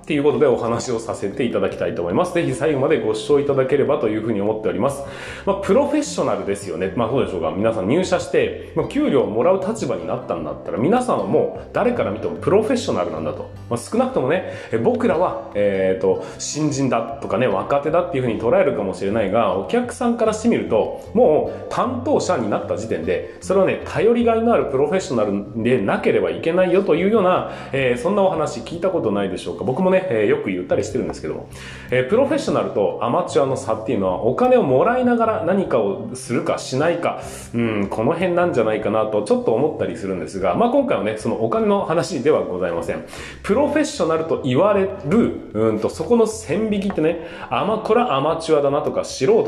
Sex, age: male, 30-49